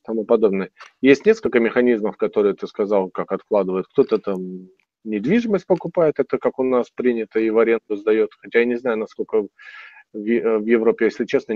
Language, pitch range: Russian, 105-130 Hz